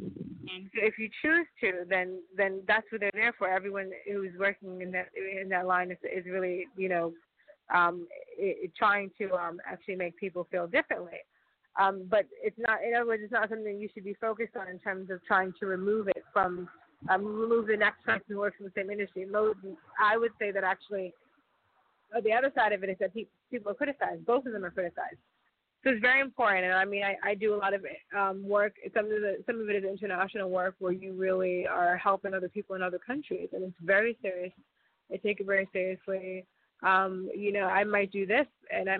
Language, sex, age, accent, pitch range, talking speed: English, female, 20-39, American, 185-210 Hz, 220 wpm